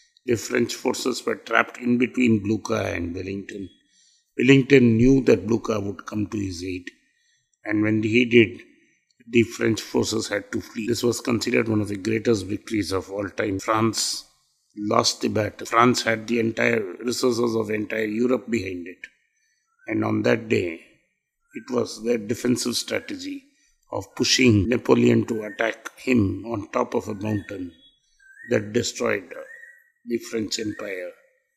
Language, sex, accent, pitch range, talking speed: Tamil, male, native, 110-135 Hz, 150 wpm